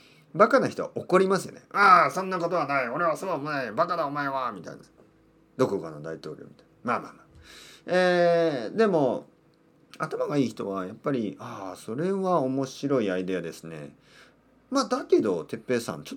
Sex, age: male, 40-59